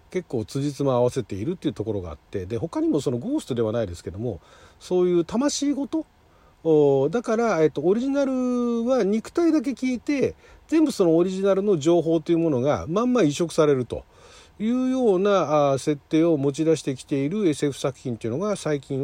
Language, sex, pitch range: Japanese, male, 125-205 Hz